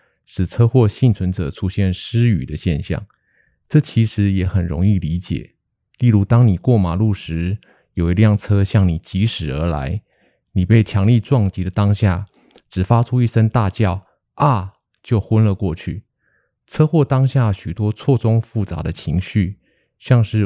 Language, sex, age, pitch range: Chinese, male, 20-39, 95-115 Hz